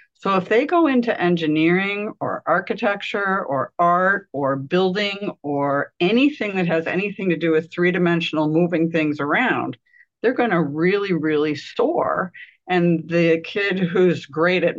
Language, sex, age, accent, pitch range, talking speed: English, female, 50-69, American, 165-225 Hz, 145 wpm